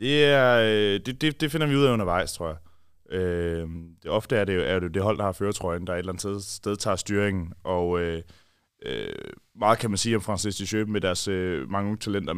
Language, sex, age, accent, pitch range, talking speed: Danish, male, 20-39, native, 90-110 Hz, 220 wpm